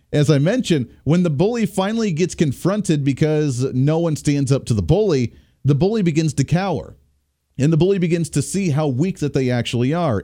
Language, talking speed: English, 200 wpm